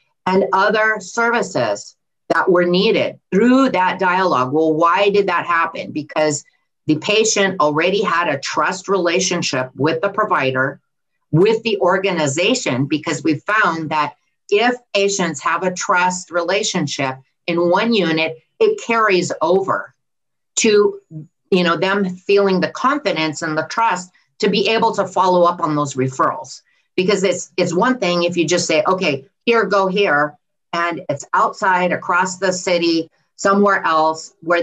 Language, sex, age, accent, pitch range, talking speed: English, female, 50-69, American, 155-200 Hz, 145 wpm